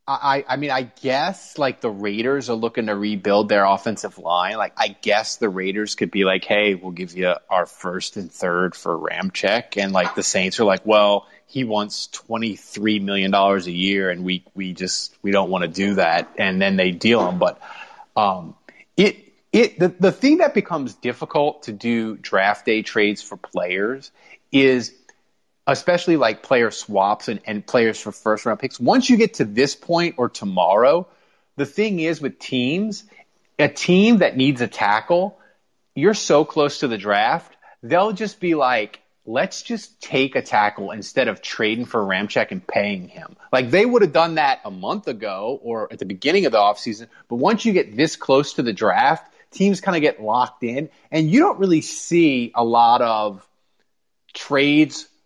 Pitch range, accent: 105-165 Hz, American